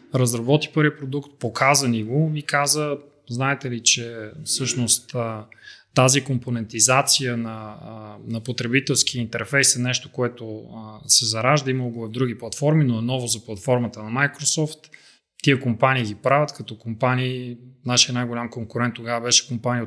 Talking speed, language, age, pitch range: 140 wpm, Bulgarian, 30-49, 120-145 Hz